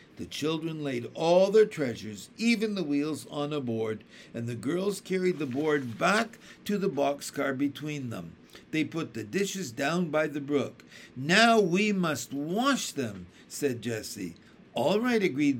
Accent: American